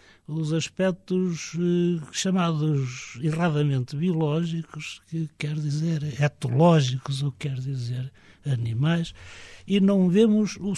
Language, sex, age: Portuguese, male, 60-79